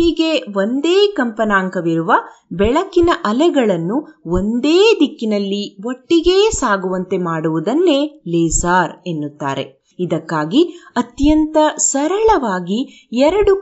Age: 30-49